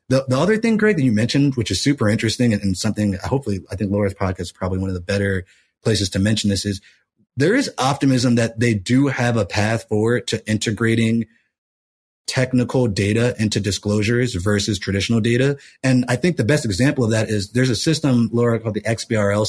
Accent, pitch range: American, 105-130 Hz